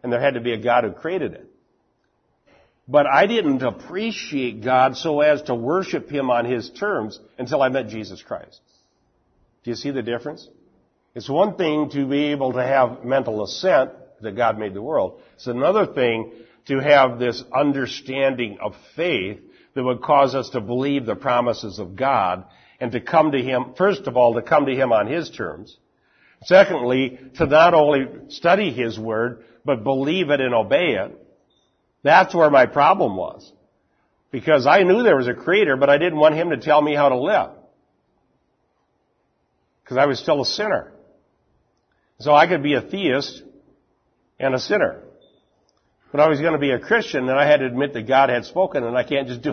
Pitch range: 120-150 Hz